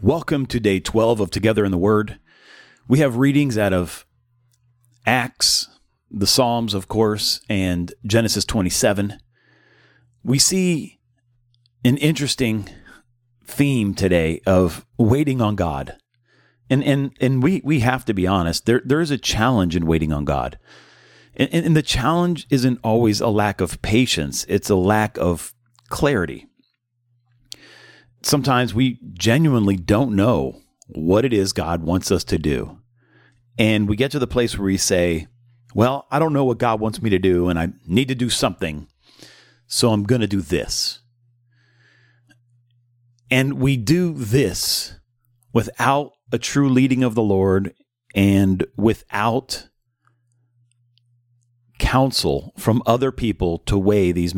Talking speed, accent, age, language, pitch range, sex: 140 wpm, American, 40-59, English, 100-125 Hz, male